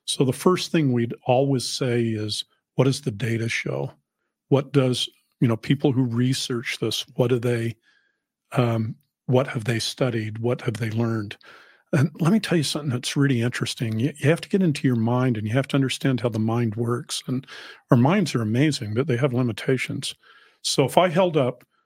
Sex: male